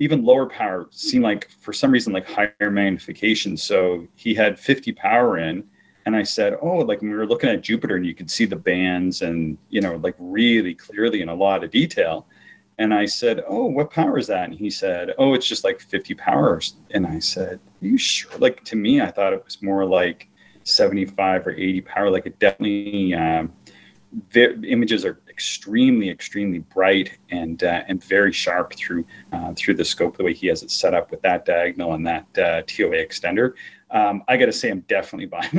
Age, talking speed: 30-49, 210 wpm